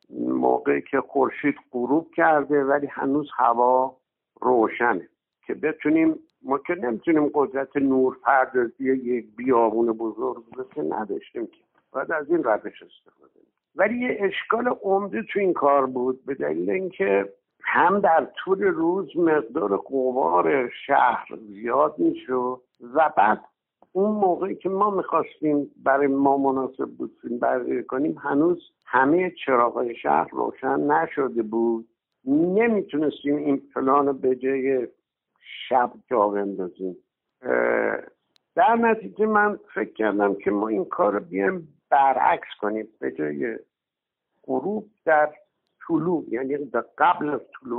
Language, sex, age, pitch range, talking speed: Persian, male, 60-79, 125-200 Hz, 125 wpm